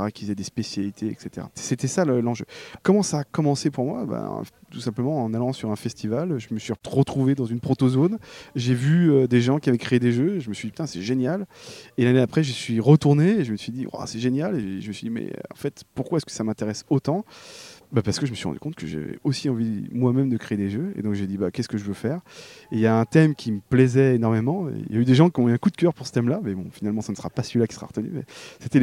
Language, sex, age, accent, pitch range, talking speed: French, male, 20-39, French, 115-140 Hz, 285 wpm